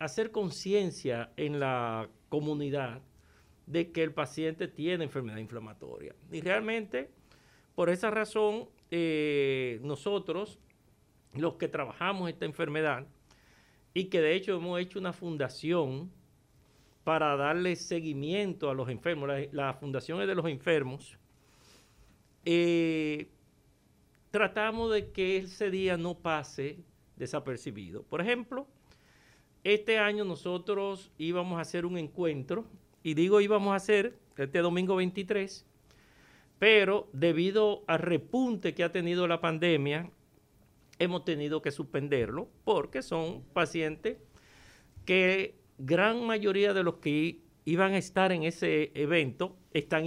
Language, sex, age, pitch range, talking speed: Spanish, male, 50-69, 140-185 Hz, 120 wpm